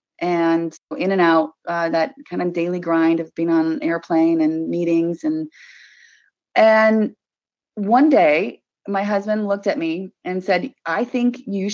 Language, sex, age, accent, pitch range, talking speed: English, female, 30-49, American, 165-240 Hz, 155 wpm